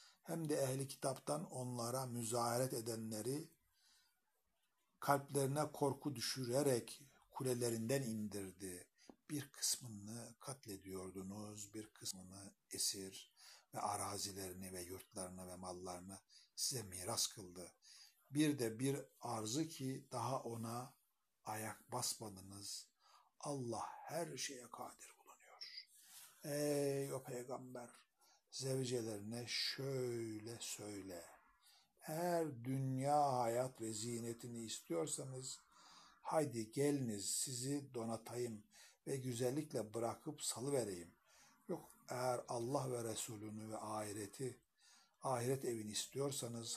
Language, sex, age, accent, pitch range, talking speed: Turkish, male, 60-79, native, 110-135 Hz, 90 wpm